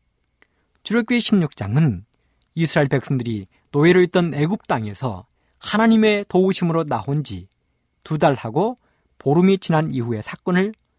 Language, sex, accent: Korean, male, native